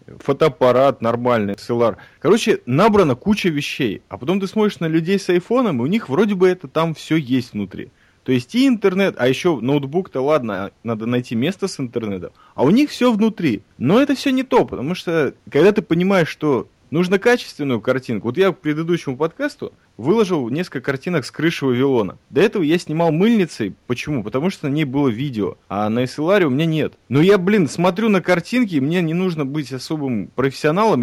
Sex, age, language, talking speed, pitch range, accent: male, 30-49, Russian, 195 wpm, 125-185 Hz, native